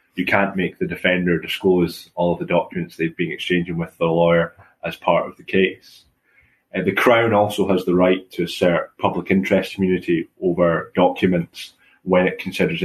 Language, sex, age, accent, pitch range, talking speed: English, male, 20-39, British, 85-95 Hz, 175 wpm